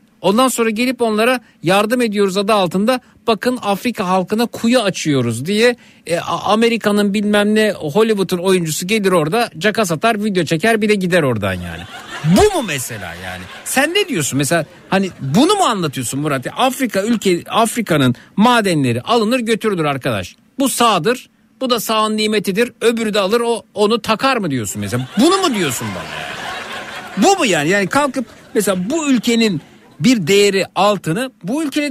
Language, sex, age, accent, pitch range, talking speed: Turkish, male, 60-79, native, 170-240 Hz, 155 wpm